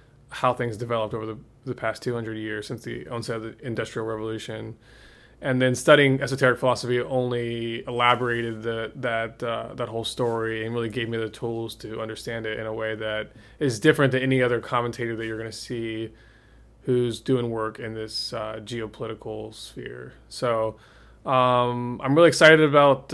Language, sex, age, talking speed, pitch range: English, male, 20-39, 175 wpm, 115-135 Hz